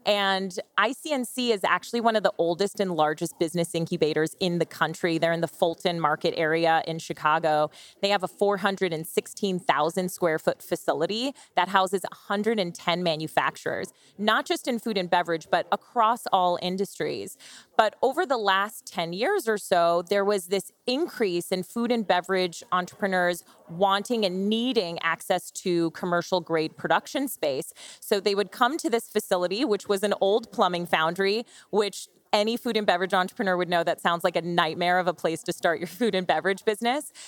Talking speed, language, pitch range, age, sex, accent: 165 wpm, English, 170-210 Hz, 30-49, female, American